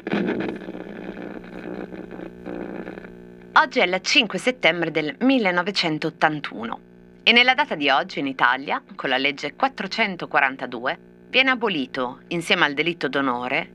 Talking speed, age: 105 wpm, 30-49